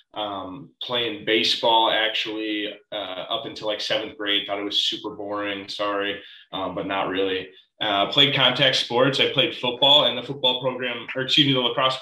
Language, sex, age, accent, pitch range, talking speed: English, male, 20-39, American, 105-125 Hz, 180 wpm